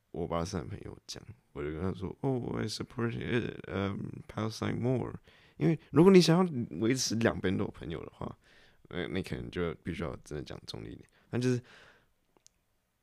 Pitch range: 90-120 Hz